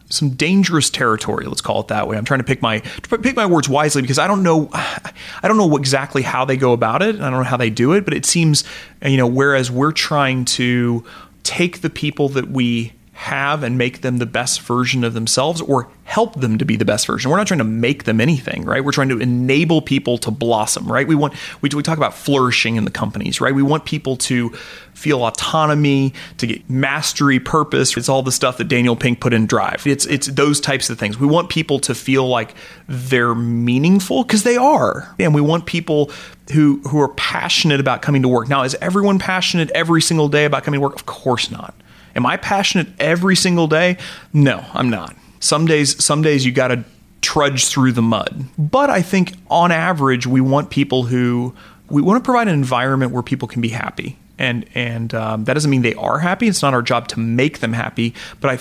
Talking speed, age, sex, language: 220 wpm, 30-49, male, English